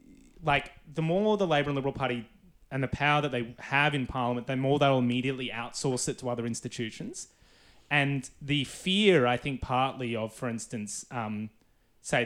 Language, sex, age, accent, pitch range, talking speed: English, male, 20-39, Australian, 115-145 Hz, 175 wpm